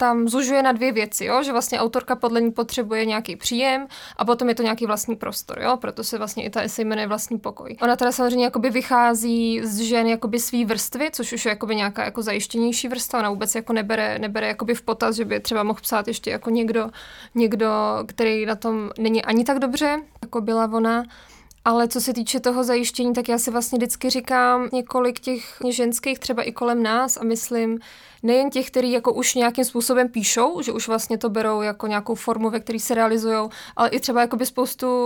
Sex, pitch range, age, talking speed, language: female, 225-245 Hz, 20-39, 205 wpm, English